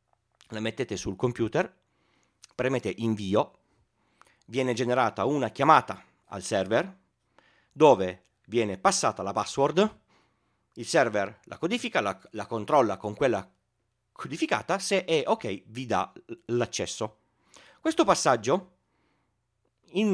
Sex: male